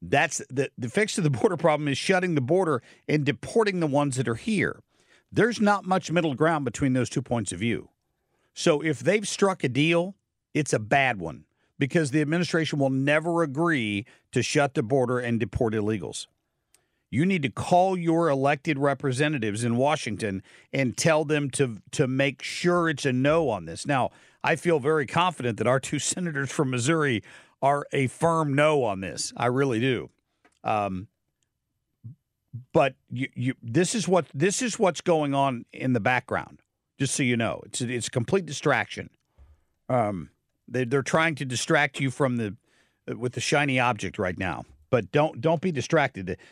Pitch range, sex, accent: 120-160 Hz, male, American